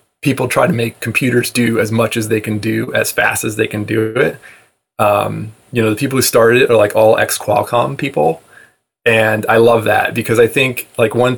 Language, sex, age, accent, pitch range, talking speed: English, male, 20-39, American, 110-130 Hz, 220 wpm